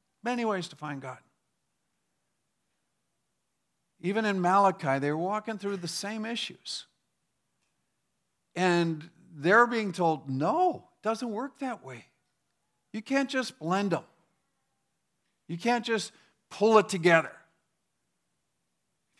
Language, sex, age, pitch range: English, male, 50-69, 145-215 Hz